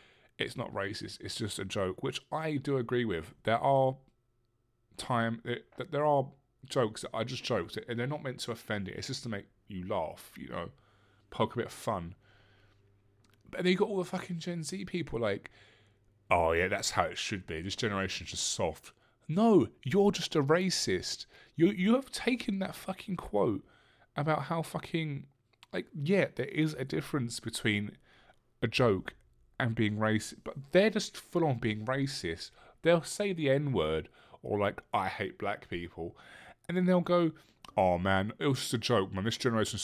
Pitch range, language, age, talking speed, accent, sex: 105-160 Hz, English, 20-39, 185 wpm, British, male